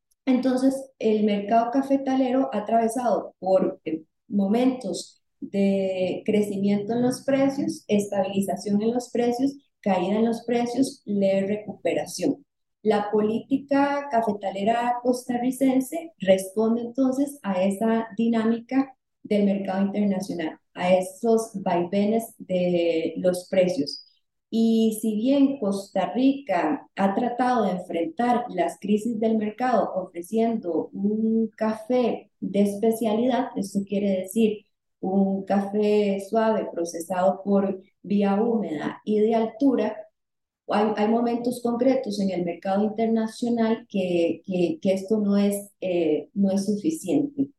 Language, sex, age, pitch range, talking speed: Spanish, female, 30-49, 195-240 Hz, 115 wpm